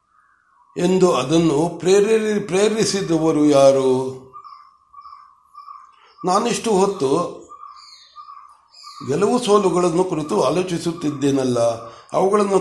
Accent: native